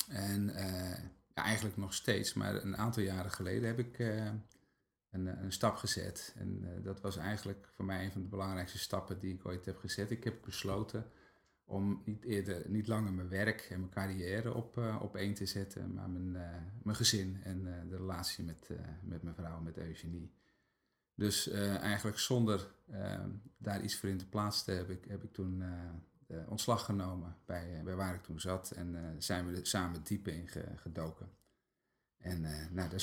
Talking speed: 200 wpm